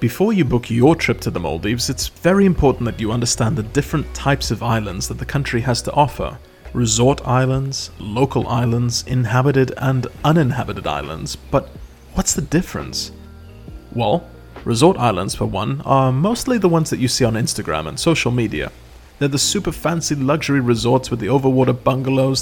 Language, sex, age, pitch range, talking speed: English, male, 30-49, 110-140 Hz, 170 wpm